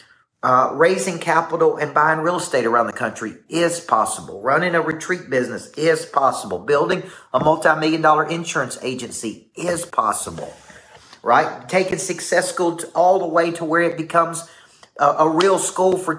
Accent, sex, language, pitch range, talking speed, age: American, male, English, 140-175 Hz, 160 wpm, 40-59